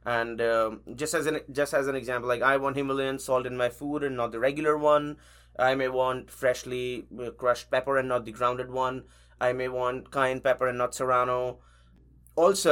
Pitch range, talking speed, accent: 120-140 Hz, 200 wpm, Indian